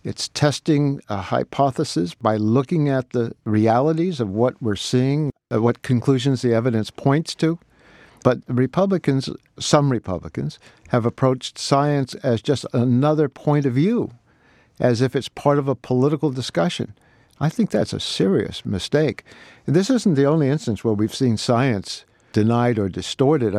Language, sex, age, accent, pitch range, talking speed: English, male, 60-79, American, 115-150 Hz, 150 wpm